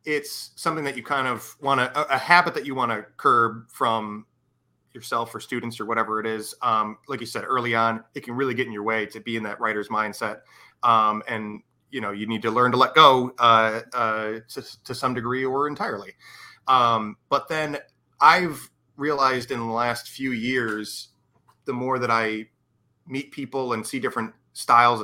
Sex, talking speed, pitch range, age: male, 195 wpm, 110-130 Hz, 30-49